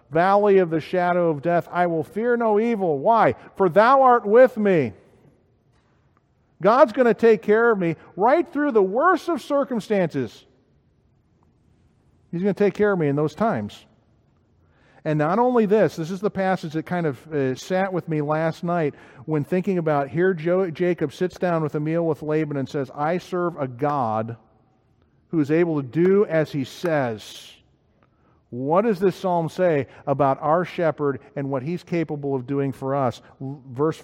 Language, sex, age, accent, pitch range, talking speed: English, male, 50-69, American, 130-180 Hz, 180 wpm